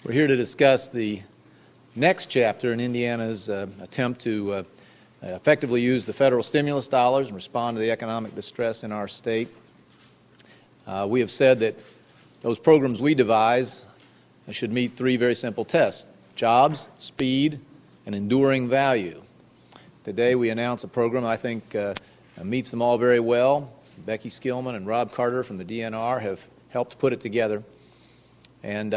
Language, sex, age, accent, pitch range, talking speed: English, male, 40-59, American, 110-130 Hz, 155 wpm